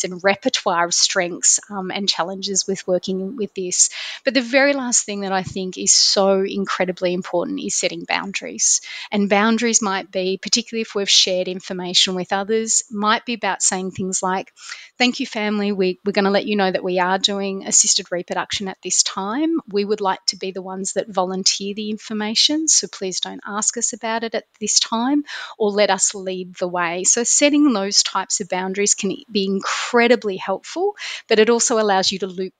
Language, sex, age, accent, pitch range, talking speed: English, female, 30-49, Australian, 190-215 Hz, 195 wpm